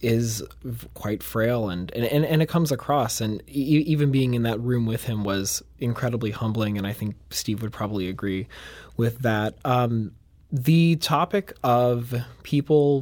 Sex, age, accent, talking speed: male, 20-39, American, 160 wpm